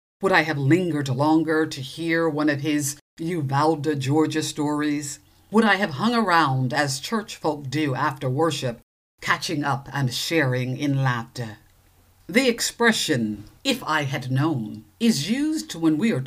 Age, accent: 50-69, American